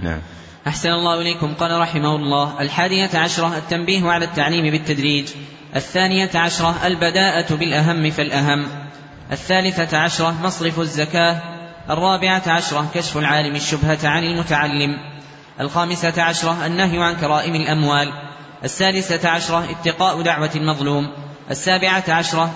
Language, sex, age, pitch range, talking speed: Arabic, male, 20-39, 145-170 Hz, 110 wpm